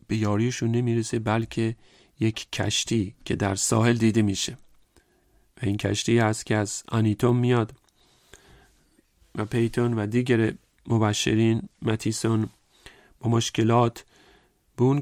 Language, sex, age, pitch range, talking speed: English, male, 40-59, 110-130 Hz, 115 wpm